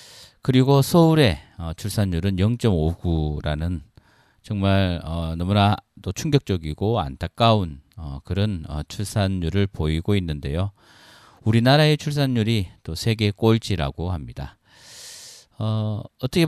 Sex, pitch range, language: male, 85-115 Hz, Korean